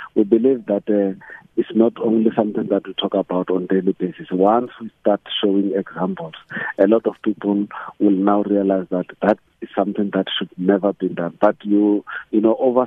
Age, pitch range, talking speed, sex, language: 50-69, 95-110 Hz, 190 wpm, male, English